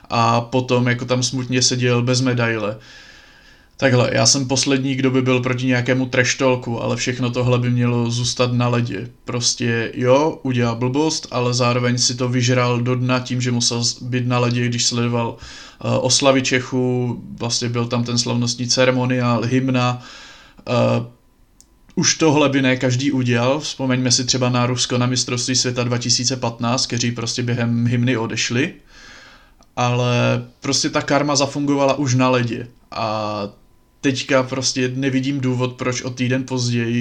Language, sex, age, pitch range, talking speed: Slovak, male, 20-39, 120-130 Hz, 150 wpm